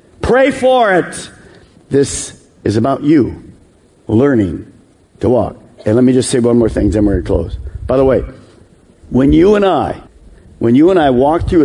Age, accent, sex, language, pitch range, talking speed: 50-69, American, male, English, 105-145 Hz, 185 wpm